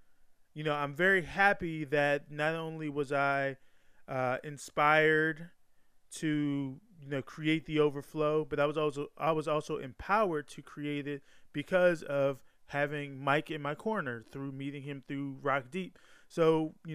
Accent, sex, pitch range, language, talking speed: American, male, 140-160 Hz, English, 155 wpm